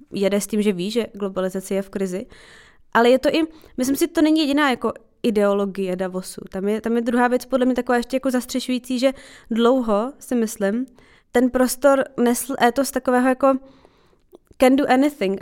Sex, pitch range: female, 205-250 Hz